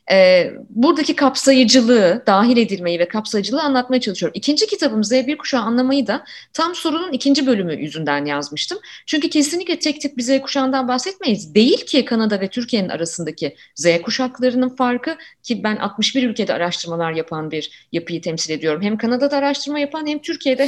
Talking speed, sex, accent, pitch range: 155 wpm, female, native, 170-270 Hz